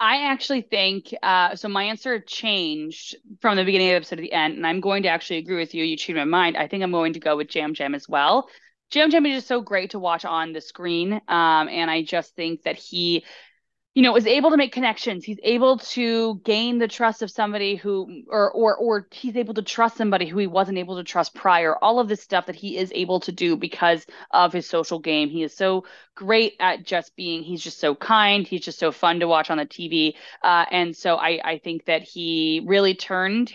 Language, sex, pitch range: English, female, 165-210 Hz